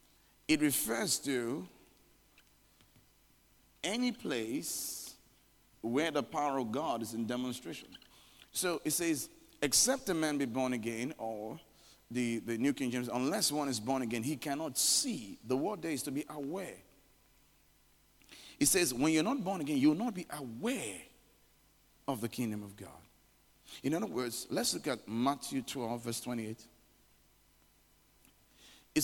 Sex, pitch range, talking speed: male, 120-180 Hz, 145 wpm